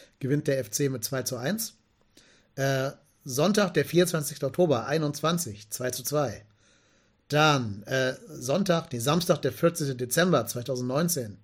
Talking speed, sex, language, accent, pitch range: 130 wpm, male, German, German, 120-155 Hz